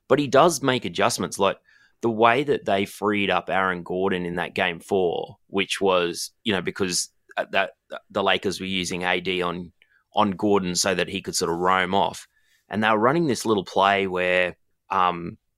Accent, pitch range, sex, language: Australian, 90-110 Hz, male, English